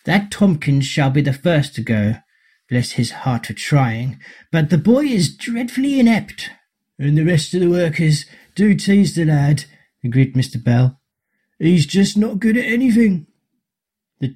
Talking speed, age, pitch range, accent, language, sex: 165 wpm, 40-59, 135-200 Hz, British, English, male